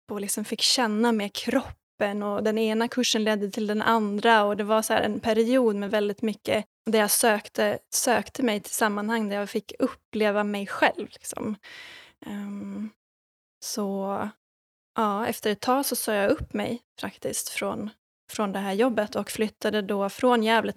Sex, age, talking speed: female, 10-29, 175 wpm